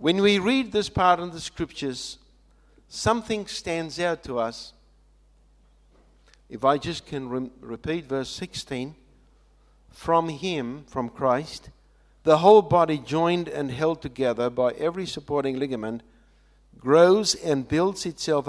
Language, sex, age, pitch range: English, male, 60-79, 135-175 Hz